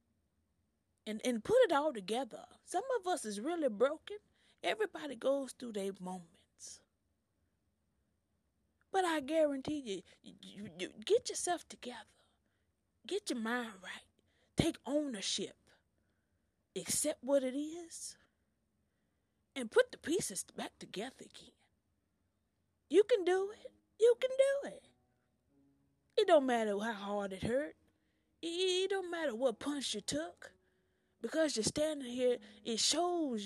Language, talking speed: English, 125 wpm